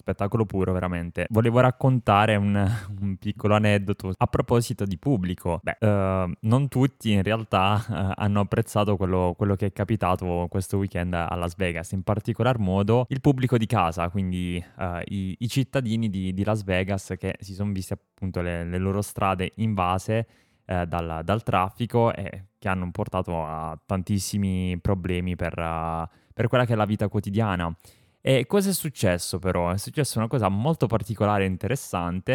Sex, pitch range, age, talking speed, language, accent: male, 90-110 Hz, 20-39, 160 wpm, Italian, native